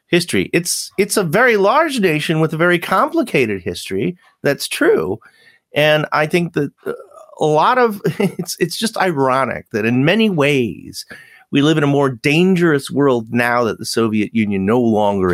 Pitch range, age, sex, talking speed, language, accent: 105-165 Hz, 40-59, male, 170 wpm, English, American